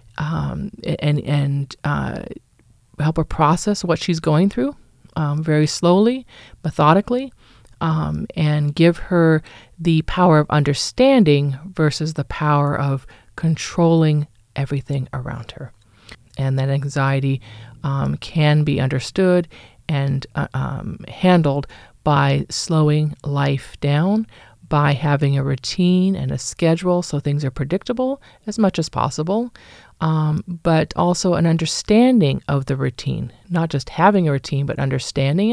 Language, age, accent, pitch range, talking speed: English, 40-59, American, 140-165 Hz, 130 wpm